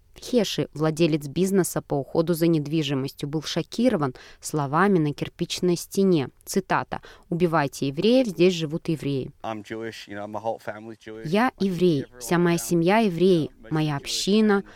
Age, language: 20-39, Russian